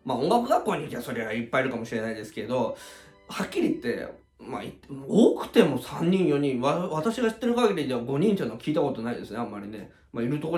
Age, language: 20-39, Japanese